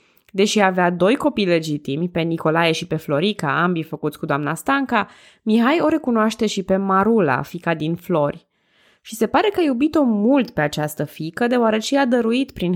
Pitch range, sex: 165-230 Hz, female